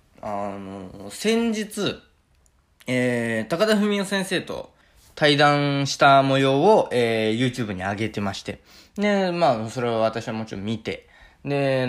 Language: Japanese